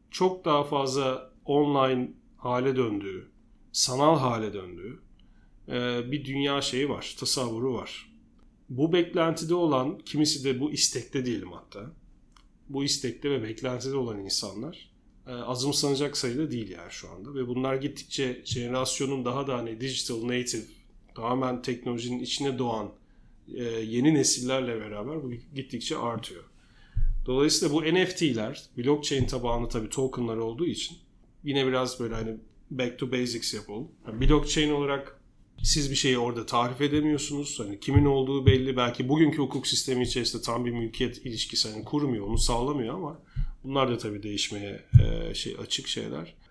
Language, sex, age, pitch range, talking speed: Turkish, male, 40-59, 120-140 Hz, 140 wpm